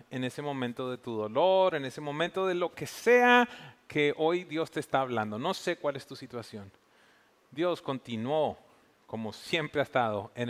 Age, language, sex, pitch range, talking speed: 40-59, English, male, 110-145 Hz, 185 wpm